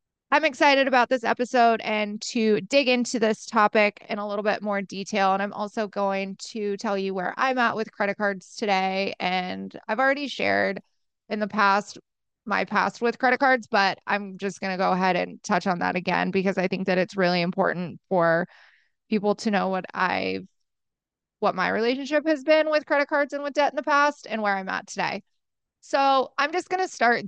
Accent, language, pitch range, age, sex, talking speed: American, English, 195-235 Hz, 20-39, female, 205 wpm